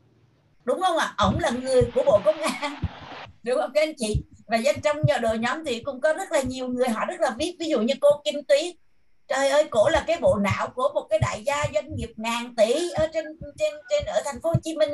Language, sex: Vietnamese, female